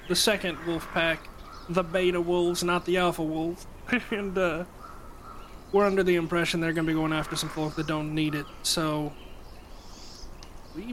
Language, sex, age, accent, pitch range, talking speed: English, male, 20-39, American, 155-185 Hz, 165 wpm